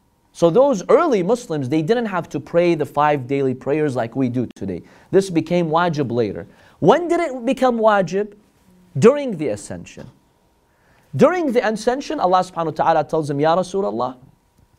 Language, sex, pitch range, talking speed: English, male, 155-230 Hz, 160 wpm